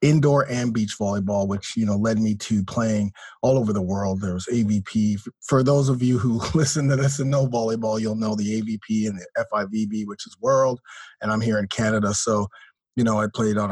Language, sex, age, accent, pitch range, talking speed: English, male, 30-49, American, 105-130 Hz, 220 wpm